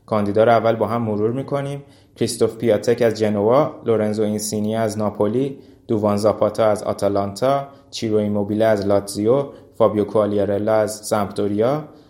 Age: 20-39